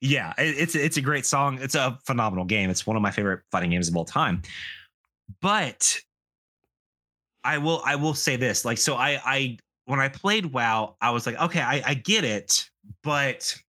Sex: male